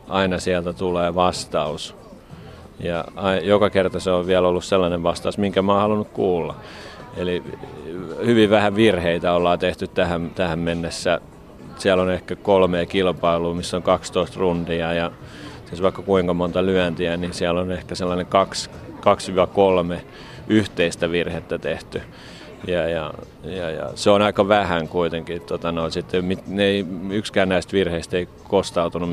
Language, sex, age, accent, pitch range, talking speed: Finnish, male, 30-49, native, 85-95 Hz, 140 wpm